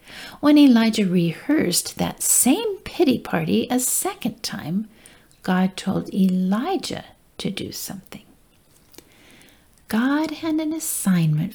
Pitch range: 210-315 Hz